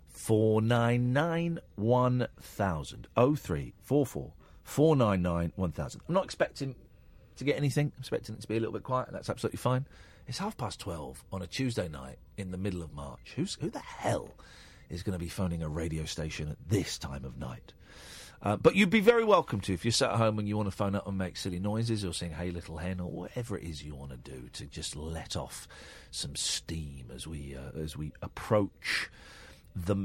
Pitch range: 90-135 Hz